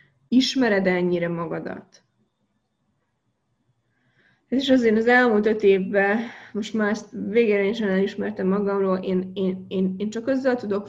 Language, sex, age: Hungarian, female, 20-39